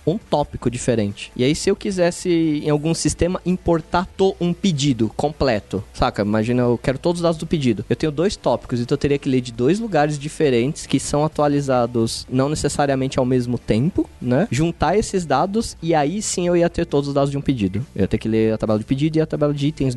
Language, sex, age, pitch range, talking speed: Portuguese, male, 20-39, 135-165 Hz, 225 wpm